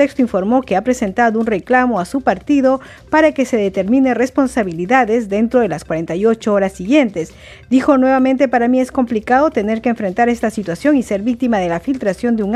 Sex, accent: female, American